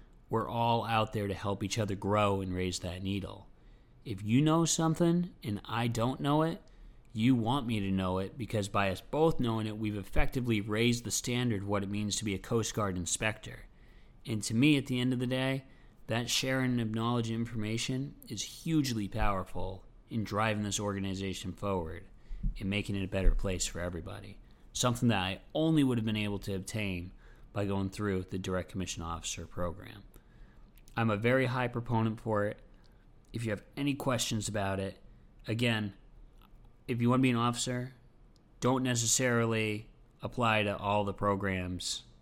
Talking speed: 180 wpm